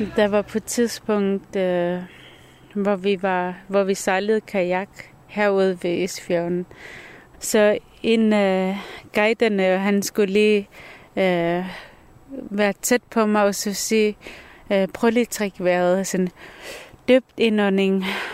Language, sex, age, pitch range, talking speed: Danish, female, 30-49, 200-250 Hz, 135 wpm